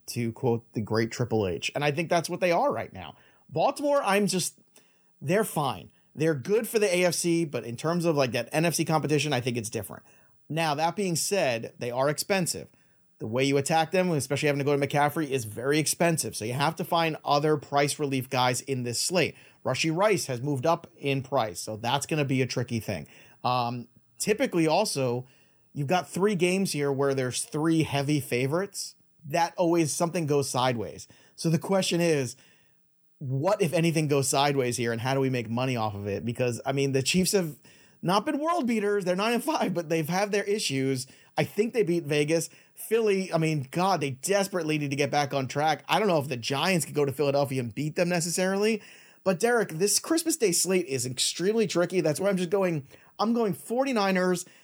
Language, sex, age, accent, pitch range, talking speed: English, male, 30-49, American, 130-180 Hz, 210 wpm